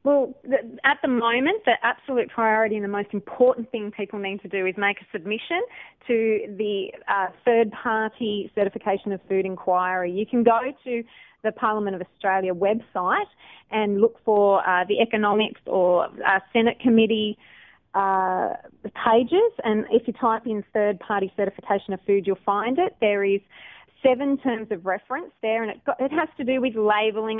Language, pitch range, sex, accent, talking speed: English, 200-245 Hz, female, Australian, 175 wpm